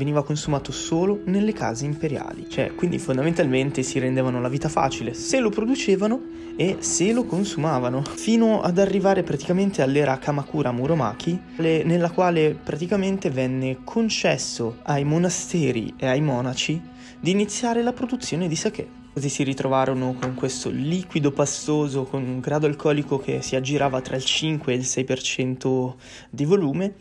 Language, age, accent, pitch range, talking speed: Italian, 20-39, native, 130-175 Hz, 145 wpm